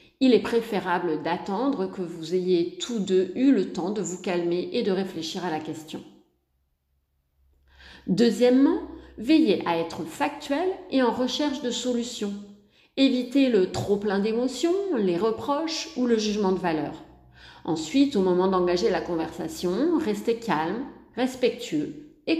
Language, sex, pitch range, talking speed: French, female, 180-275 Hz, 140 wpm